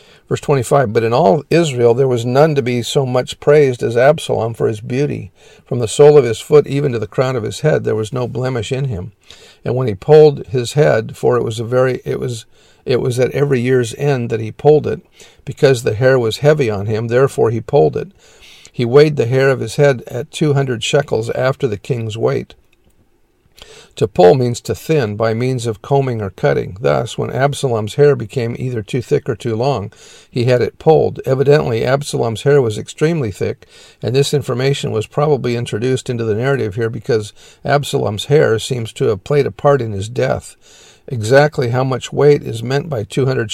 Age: 50-69